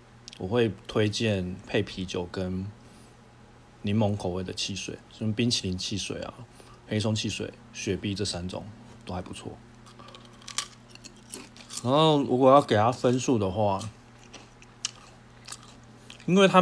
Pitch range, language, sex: 105-120 Hz, Chinese, male